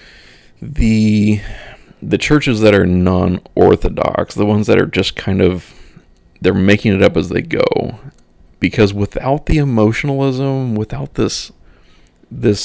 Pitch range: 105-125 Hz